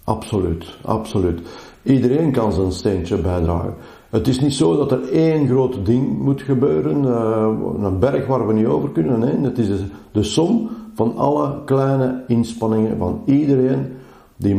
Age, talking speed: 50-69, 150 wpm